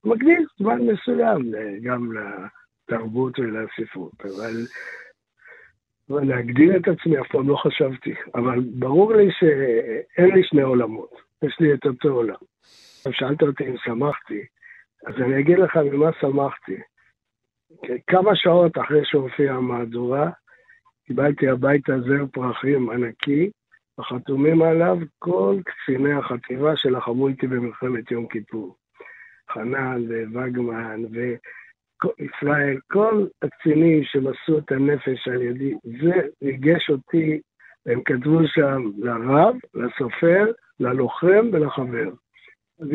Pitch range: 125-160 Hz